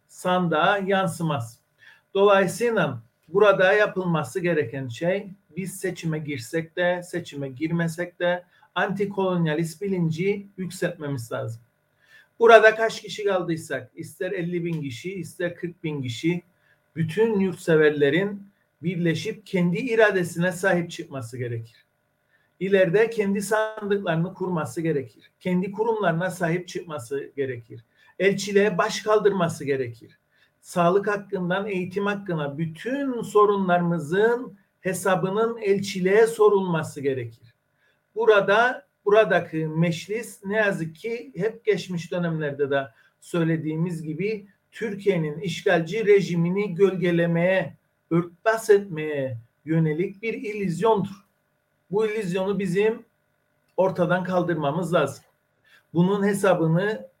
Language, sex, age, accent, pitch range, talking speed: Turkish, male, 50-69, native, 160-200 Hz, 95 wpm